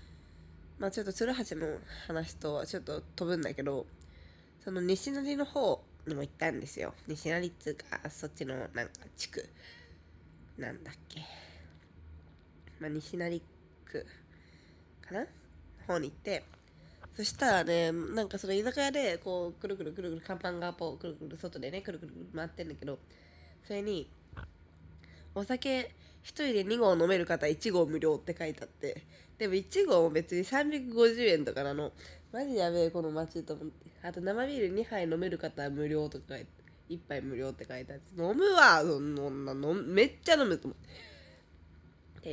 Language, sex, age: Japanese, female, 20-39